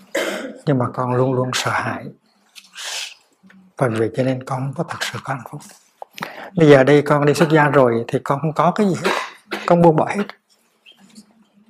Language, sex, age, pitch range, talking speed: Vietnamese, male, 60-79, 130-185 Hz, 190 wpm